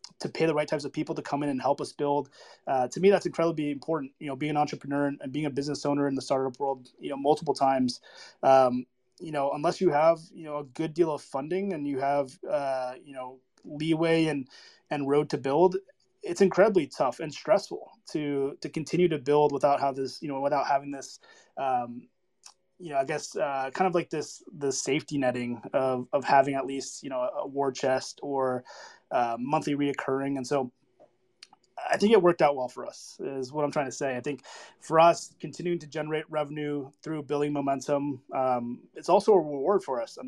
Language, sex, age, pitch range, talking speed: English, male, 20-39, 135-160 Hz, 215 wpm